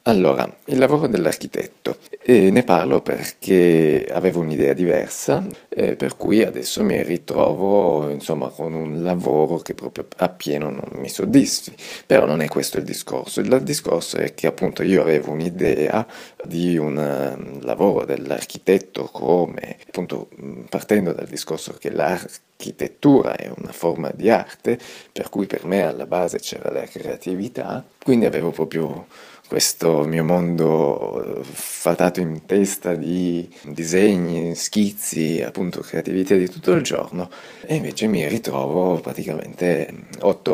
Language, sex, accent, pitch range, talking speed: Italian, male, native, 75-90 Hz, 130 wpm